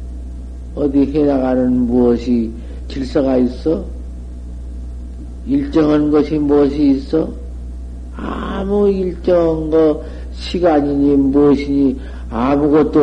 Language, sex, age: Korean, male, 50-69